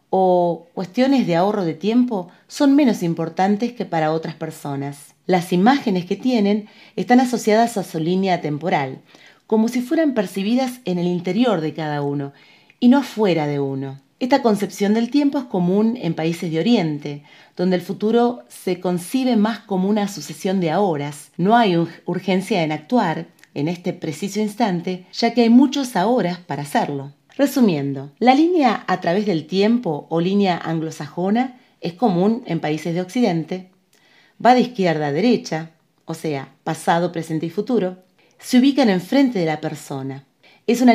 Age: 30-49